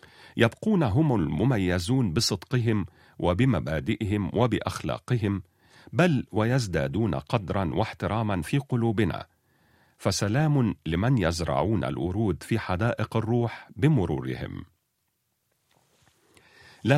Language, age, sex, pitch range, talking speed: Arabic, 50-69, male, 95-135 Hz, 75 wpm